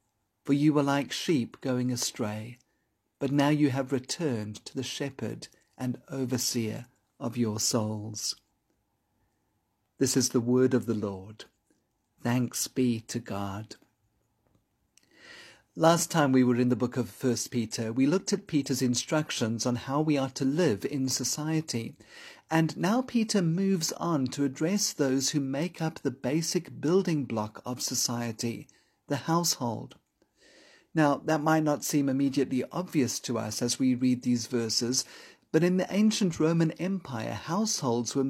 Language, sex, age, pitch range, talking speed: English, male, 40-59, 120-155 Hz, 150 wpm